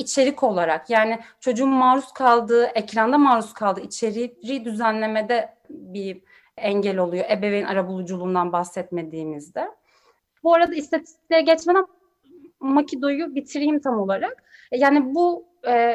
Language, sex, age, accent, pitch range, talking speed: Turkish, female, 30-49, native, 210-290 Hz, 105 wpm